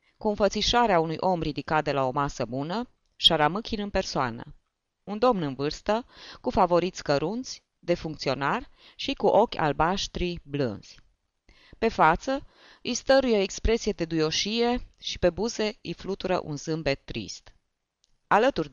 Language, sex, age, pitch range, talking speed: Romanian, female, 20-39, 145-215 Hz, 135 wpm